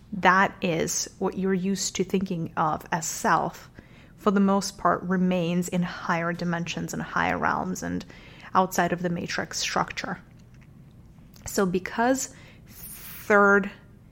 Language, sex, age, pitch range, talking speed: English, female, 30-49, 170-195 Hz, 130 wpm